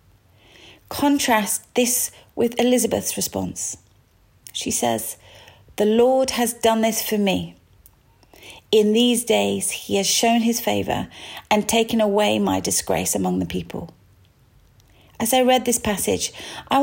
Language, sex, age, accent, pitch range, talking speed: English, female, 40-59, British, 190-230 Hz, 130 wpm